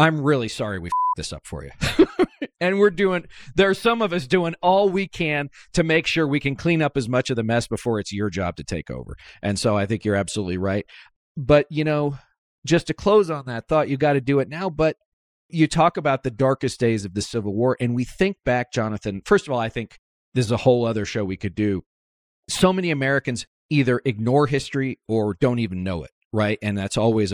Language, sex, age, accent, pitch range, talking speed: English, male, 40-59, American, 115-170 Hz, 235 wpm